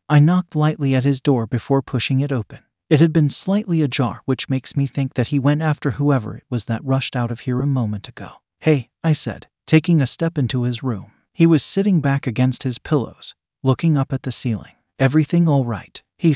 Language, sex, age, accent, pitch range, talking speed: English, male, 40-59, American, 125-155 Hz, 215 wpm